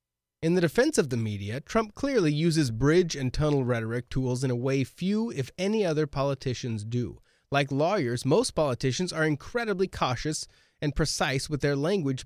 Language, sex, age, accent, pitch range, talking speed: English, male, 30-49, American, 115-160 Hz, 170 wpm